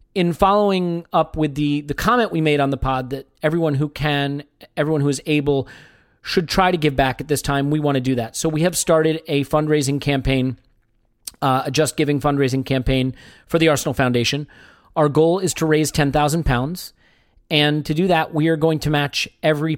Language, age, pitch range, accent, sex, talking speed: English, 40-59, 140-160 Hz, American, male, 205 wpm